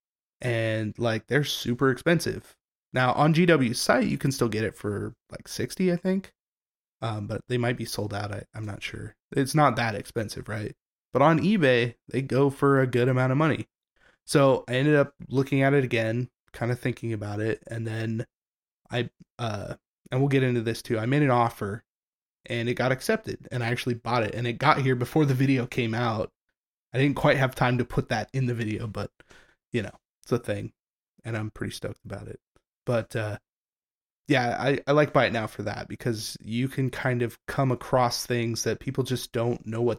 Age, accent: 20-39, American